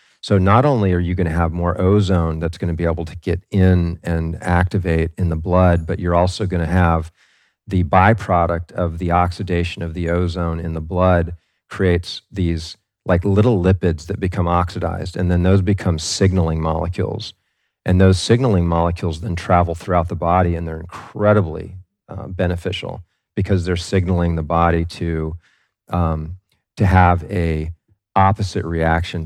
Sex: male